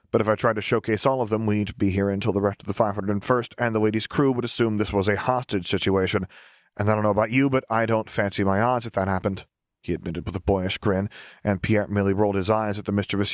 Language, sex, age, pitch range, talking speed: English, male, 30-49, 100-115 Hz, 265 wpm